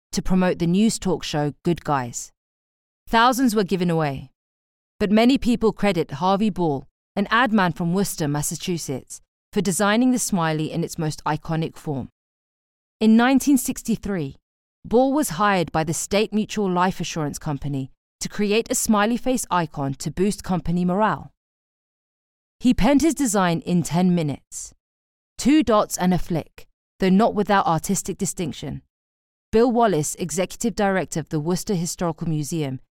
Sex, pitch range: female, 150-205 Hz